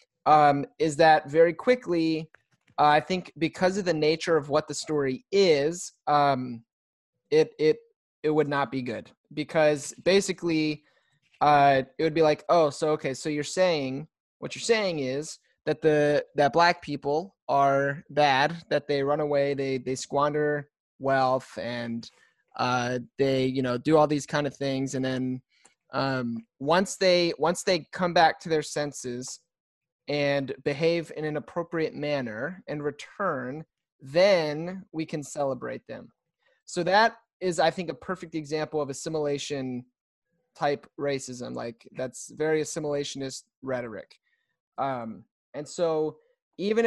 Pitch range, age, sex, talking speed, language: 140-170 Hz, 20-39, male, 145 wpm, English